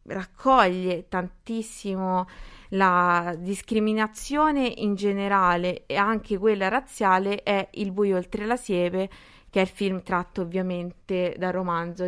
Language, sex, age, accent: Italian, female, 20-39, native